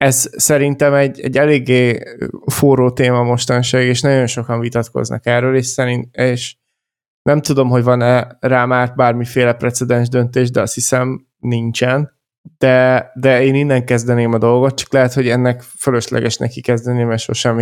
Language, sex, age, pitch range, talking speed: Hungarian, male, 20-39, 120-130 Hz, 150 wpm